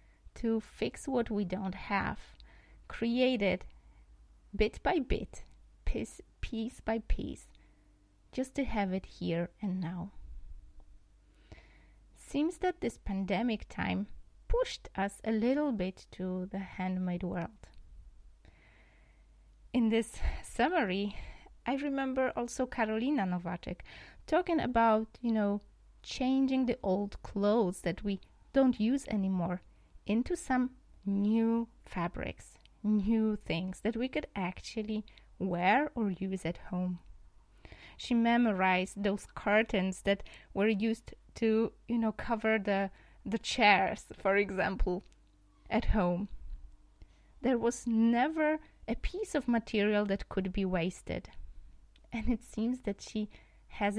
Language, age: Polish, 20-39